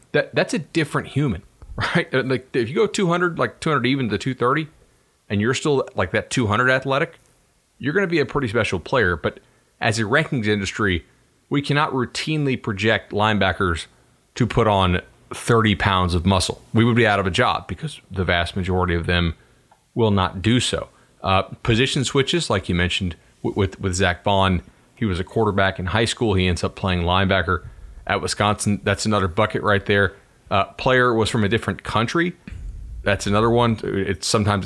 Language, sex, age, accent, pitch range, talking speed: English, male, 30-49, American, 95-120 Hz, 185 wpm